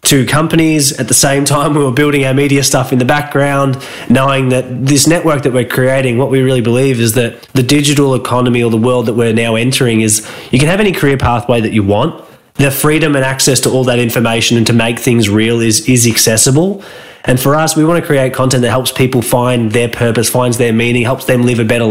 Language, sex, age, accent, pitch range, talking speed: English, male, 20-39, Australian, 120-140 Hz, 235 wpm